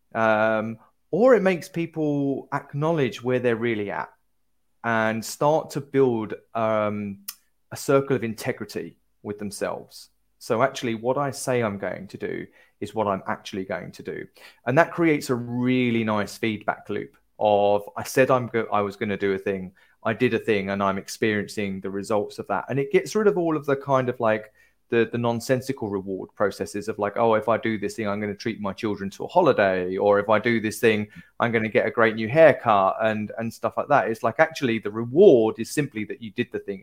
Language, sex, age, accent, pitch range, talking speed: English, male, 30-49, British, 105-135 Hz, 215 wpm